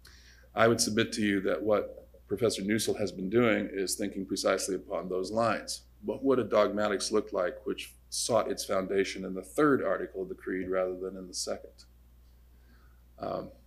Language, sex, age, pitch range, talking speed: English, male, 40-59, 75-125 Hz, 180 wpm